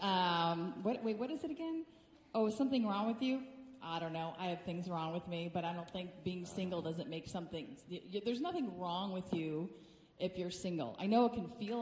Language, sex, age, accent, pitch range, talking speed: English, female, 30-49, American, 175-230 Hz, 235 wpm